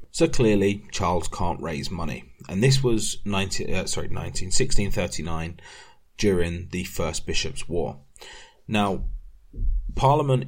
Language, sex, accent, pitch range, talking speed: English, male, British, 85-105 Hz, 120 wpm